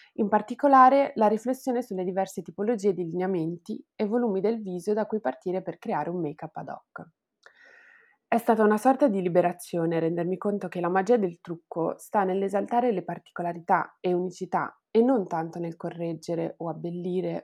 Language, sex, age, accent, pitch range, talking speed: Italian, female, 20-39, native, 170-220 Hz, 165 wpm